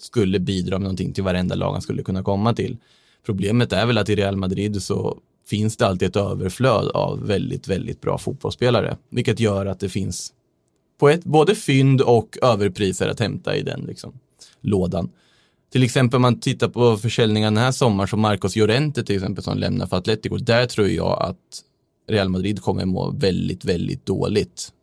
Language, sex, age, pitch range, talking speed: Swedish, male, 20-39, 95-120 Hz, 180 wpm